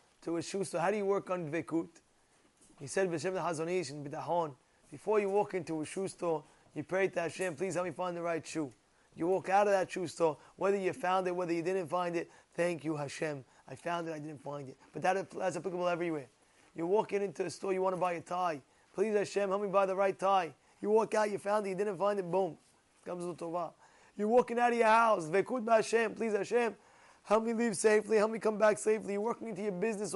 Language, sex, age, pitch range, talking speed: English, male, 20-39, 170-215 Hz, 235 wpm